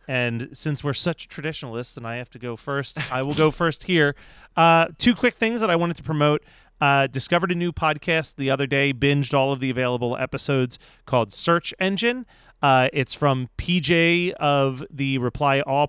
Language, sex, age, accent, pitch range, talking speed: English, male, 30-49, American, 125-155 Hz, 190 wpm